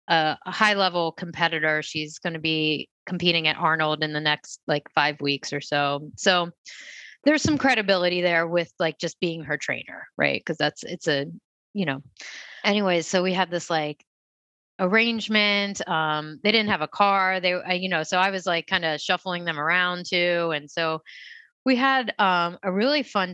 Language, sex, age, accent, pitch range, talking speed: English, female, 30-49, American, 160-205 Hz, 180 wpm